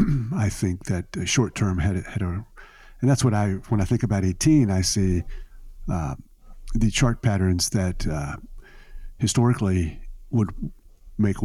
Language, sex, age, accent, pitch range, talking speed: English, male, 50-69, American, 95-115 Hz, 145 wpm